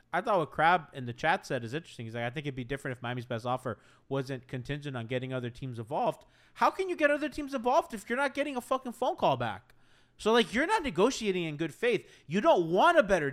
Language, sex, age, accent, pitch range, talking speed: English, male, 30-49, American, 145-230 Hz, 255 wpm